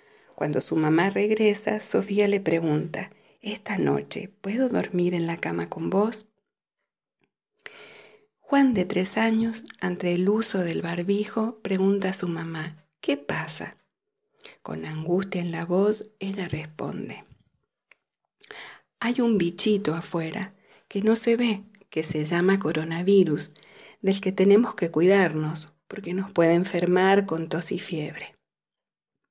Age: 40-59